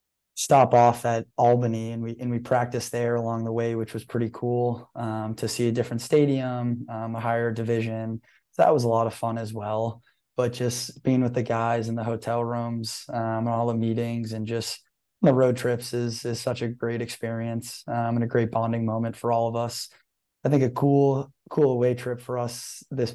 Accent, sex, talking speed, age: American, male, 220 wpm, 20-39